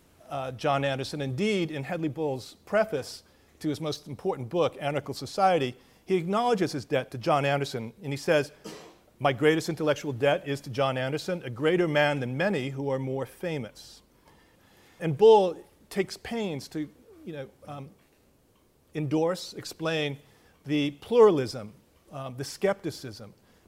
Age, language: 40-59, English